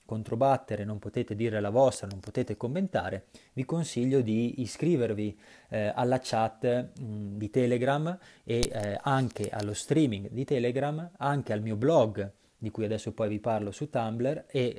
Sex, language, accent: male, Italian, native